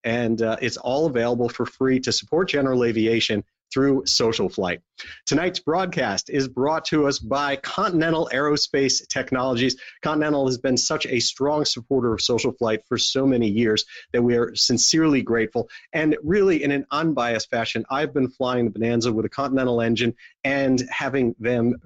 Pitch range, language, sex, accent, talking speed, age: 115-145 Hz, English, male, American, 165 wpm, 40-59